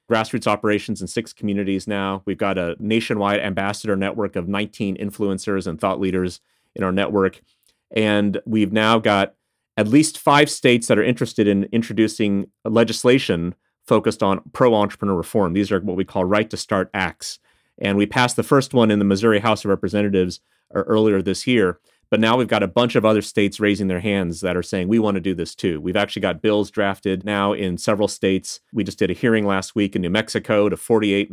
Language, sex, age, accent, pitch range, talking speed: English, male, 30-49, American, 95-110 Hz, 195 wpm